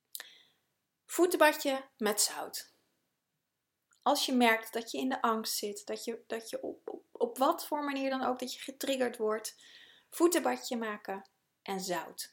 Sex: female